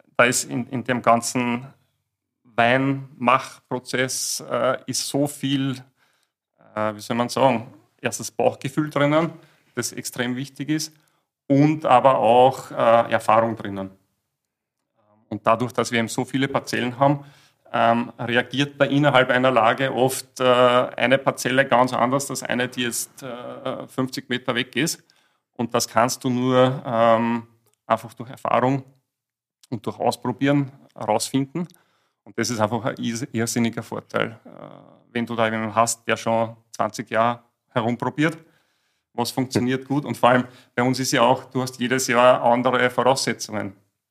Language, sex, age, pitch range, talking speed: German, male, 40-59, 115-135 Hz, 145 wpm